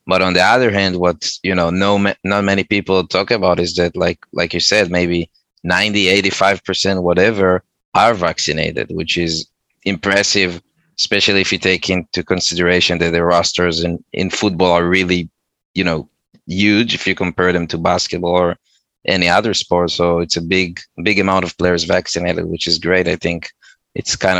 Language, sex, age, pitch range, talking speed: Hebrew, male, 20-39, 85-100 Hz, 185 wpm